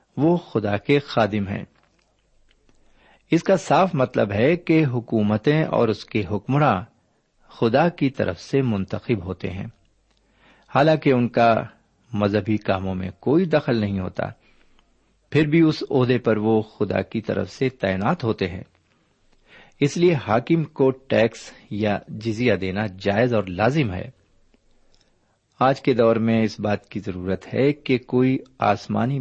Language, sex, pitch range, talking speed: Urdu, male, 100-135 Hz, 145 wpm